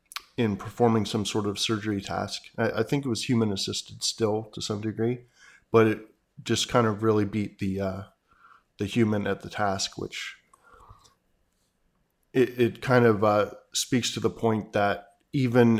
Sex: male